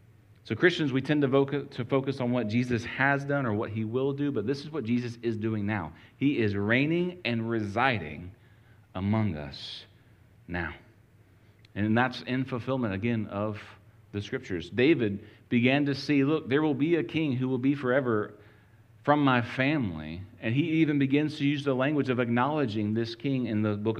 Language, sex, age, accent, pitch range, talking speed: English, male, 40-59, American, 105-130 Hz, 180 wpm